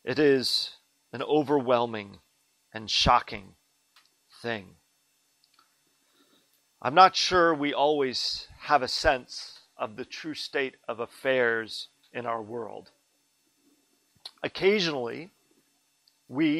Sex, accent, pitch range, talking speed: male, American, 125-165 Hz, 95 wpm